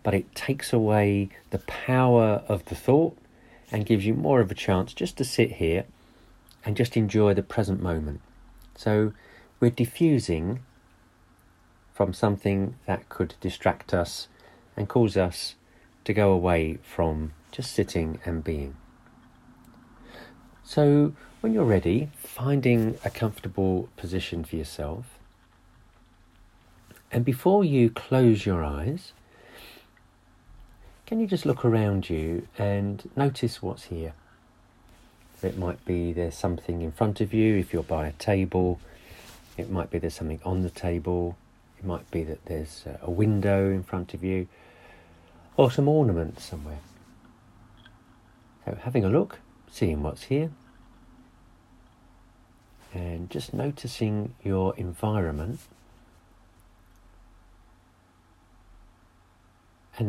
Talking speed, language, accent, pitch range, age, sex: 120 wpm, English, British, 85-115 Hz, 40-59, male